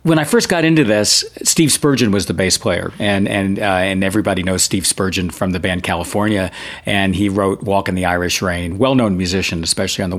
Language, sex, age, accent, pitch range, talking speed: English, male, 50-69, American, 95-150 Hz, 220 wpm